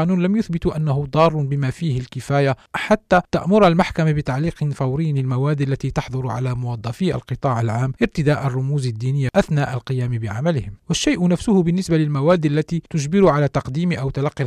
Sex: male